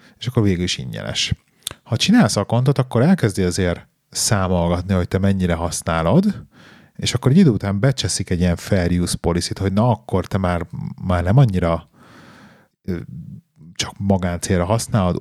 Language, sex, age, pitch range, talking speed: Hungarian, male, 30-49, 90-115 Hz, 150 wpm